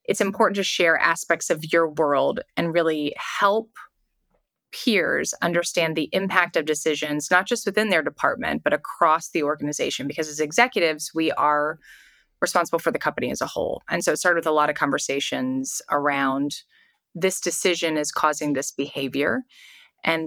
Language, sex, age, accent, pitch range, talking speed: English, female, 20-39, American, 155-190 Hz, 165 wpm